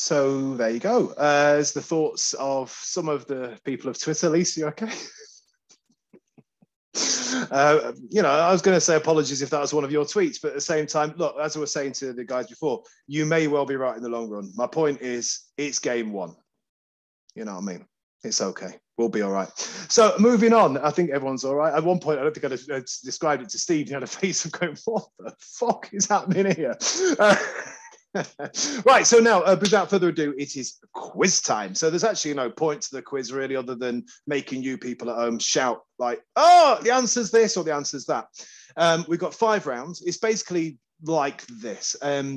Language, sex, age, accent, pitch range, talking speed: English, male, 30-49, British, 130-190 Hz, 220 wpm